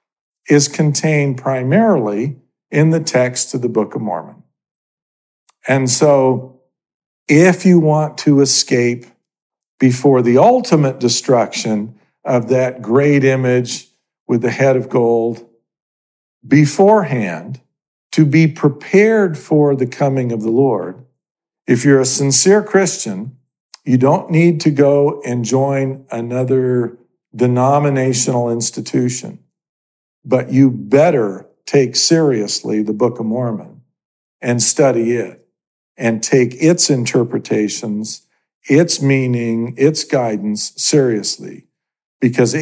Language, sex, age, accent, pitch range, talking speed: English, male, 50-69, American, 115-145 Hz, 110 wpm